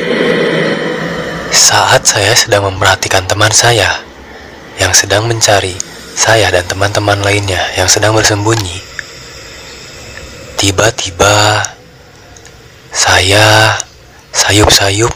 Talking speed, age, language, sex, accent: 75 wpm, 20-39, Indonesian, male, native